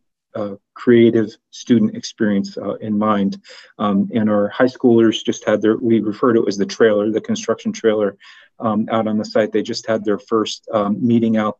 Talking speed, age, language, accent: 195 wpm, 40-59, English, American